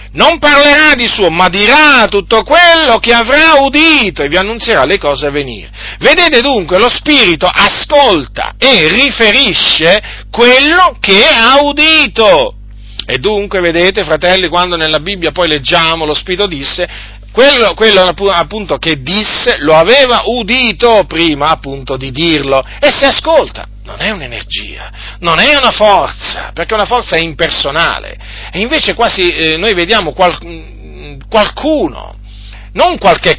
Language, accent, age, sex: Italian, native, 40-59, male